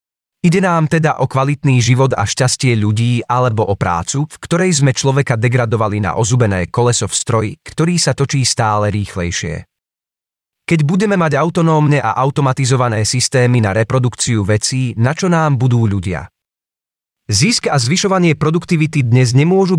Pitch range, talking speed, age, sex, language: 115-155 Hz, 145 wpm, 30-49, male, Czech